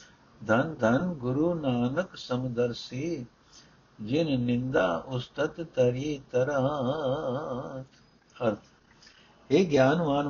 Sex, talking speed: male, 65 wpm